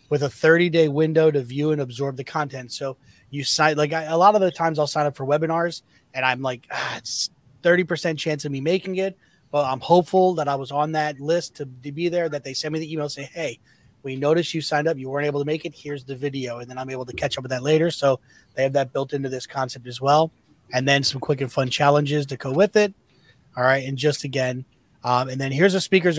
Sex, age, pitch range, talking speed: male, 30-49, 130-155 Hz, 255 wpm